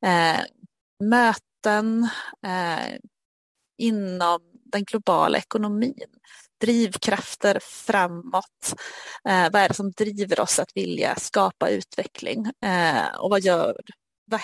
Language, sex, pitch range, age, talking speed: Swedish, female, 190-230 Hz, 30-49, 105 wpm